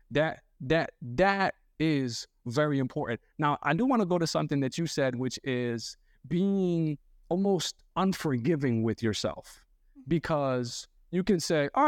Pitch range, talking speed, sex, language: 140-185 Hz, 145 wpm, male, English